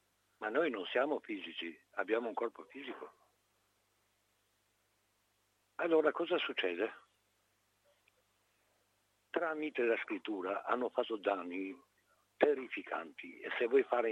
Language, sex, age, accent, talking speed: Italian, male, 60-79, native, 100 wpm